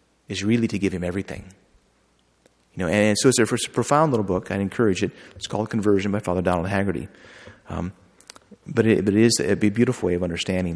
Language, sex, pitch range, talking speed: English, male, 95-115 Hz, 230 wpm